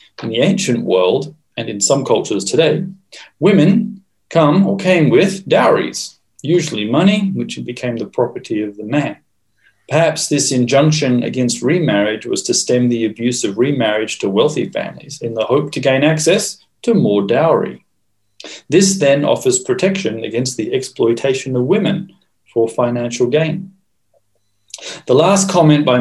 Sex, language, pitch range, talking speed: male, English, 115-155 Hz, 150 wpm